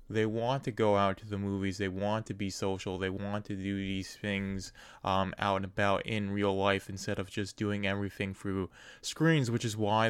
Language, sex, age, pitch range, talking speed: English, male, 20-39, 95-105 Hz, 215 wpm